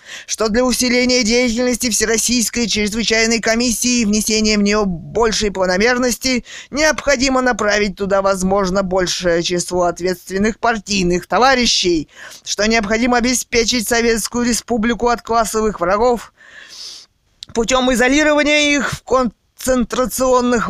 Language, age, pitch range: Russian, 20-39, 180-240 Hz